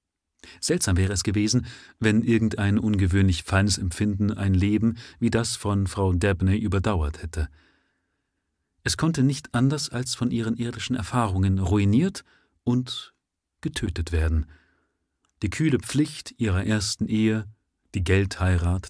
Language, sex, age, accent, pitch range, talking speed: German, male, 40-59, German, 90-115 Hz, 125 wpm